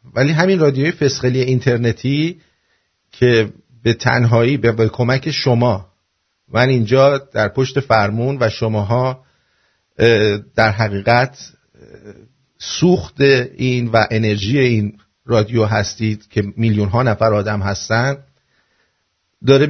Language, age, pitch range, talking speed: English, 50-69, 115-145 Hz, 105 wpm